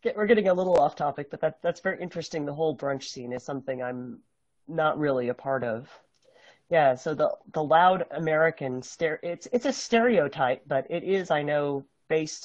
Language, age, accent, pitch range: English, 40-59, American, 135-175 Hz